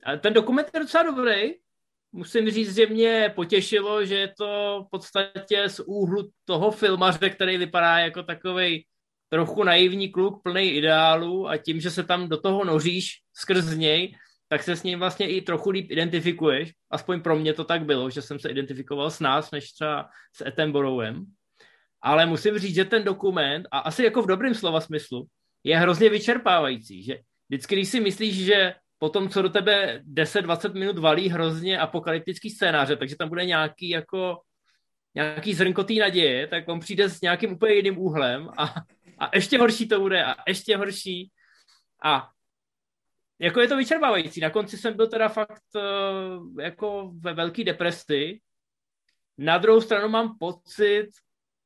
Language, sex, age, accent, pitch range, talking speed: Czech, male, 20-39, native, 160-205 Hz, 165 wpm